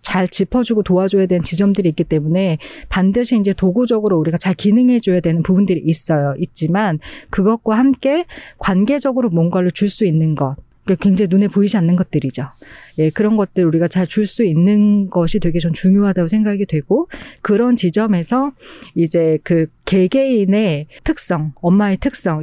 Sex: female